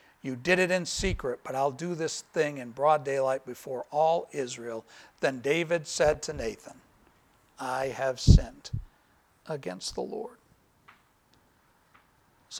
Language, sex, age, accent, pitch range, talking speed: English, male, 60-79, American, 145-185 Hz, 135 wpm